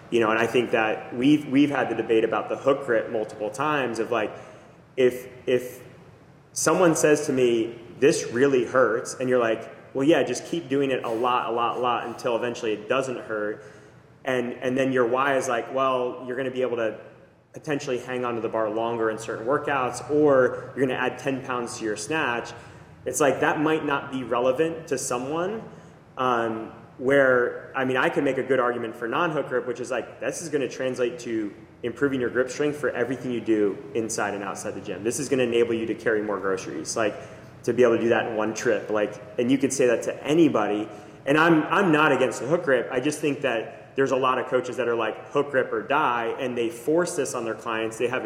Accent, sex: American, male